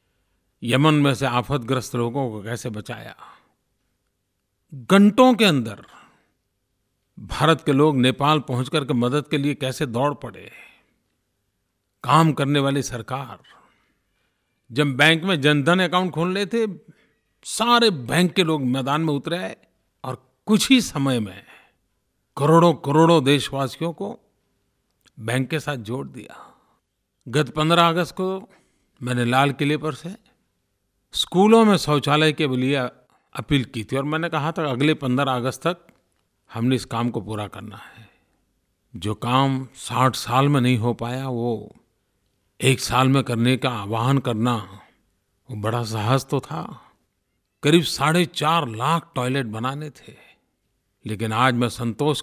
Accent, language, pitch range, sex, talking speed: native, Hindi, 115-155 Hz, male, 140 wpm